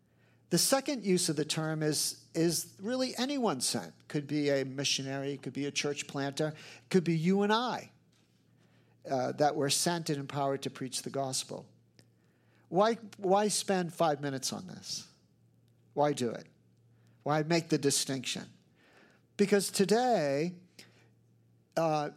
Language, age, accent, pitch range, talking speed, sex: English, 50-69, American, 140-190 Hz, 140 wpm, male